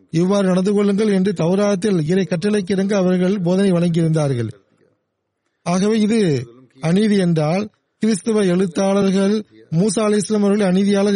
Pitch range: 165-195 Hz